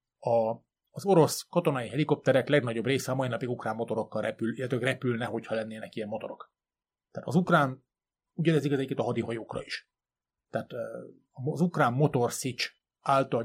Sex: male